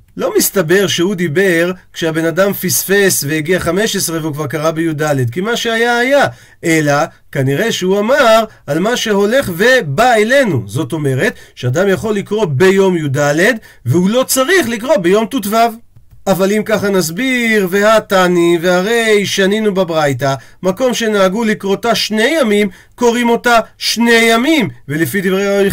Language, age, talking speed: Hebrew, 40-59, 140 wpm